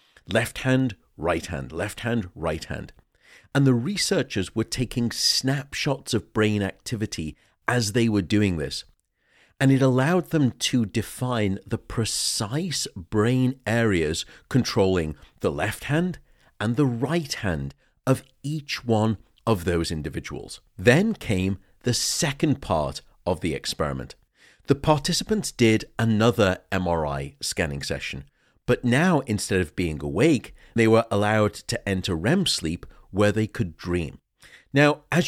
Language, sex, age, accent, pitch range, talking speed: English, male, 50-69, British, 95-130 Hz, 135 wpm